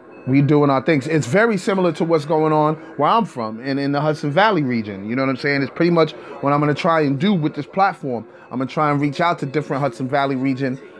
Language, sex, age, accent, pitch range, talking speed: English, male, 30-49, American, 135-160 Hz, 265 wpm